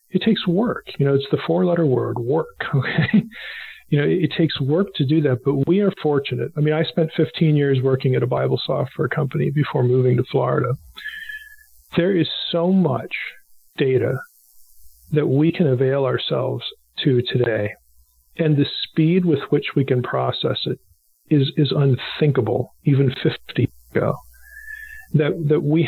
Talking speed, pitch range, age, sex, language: 160 wpm, 130-165 Hz, 40-59, male, English